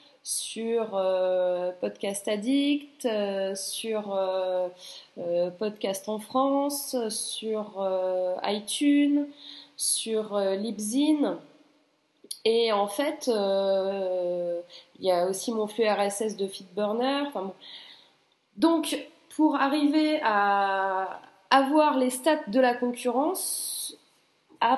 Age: 20-39